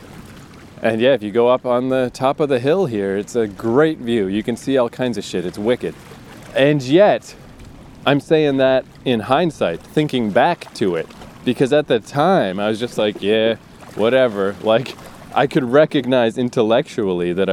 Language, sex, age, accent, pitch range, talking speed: English, male, 20-39, American, 110-145 Hz, 180 wpm